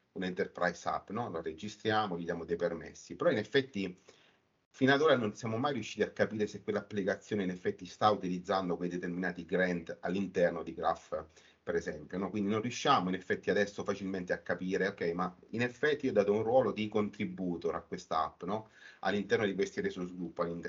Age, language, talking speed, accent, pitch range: 40-59, Italian, 185 wpm, native, 90-125 Hz